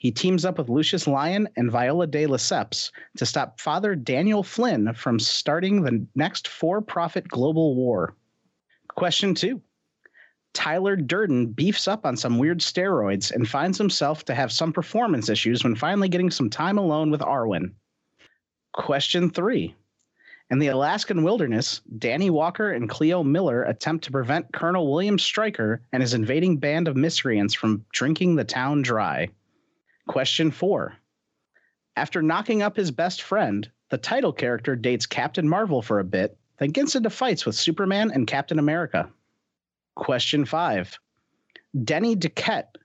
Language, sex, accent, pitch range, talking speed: English, male, American, 130-185 Hz, 150 wpm